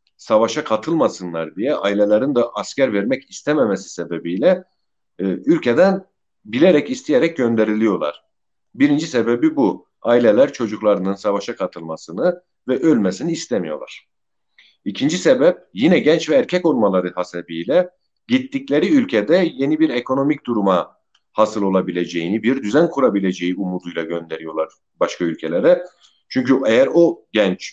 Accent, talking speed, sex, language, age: Turkish, 110 wpm, male, German, 50-69